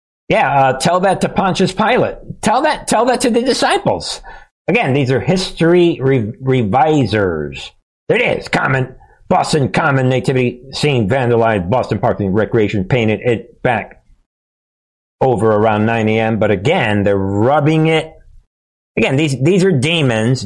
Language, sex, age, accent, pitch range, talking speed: English, male, 50-69, American, 105-145 Hz, 145 wpm